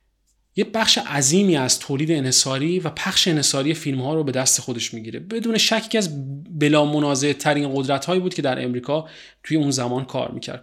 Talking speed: 180 wpm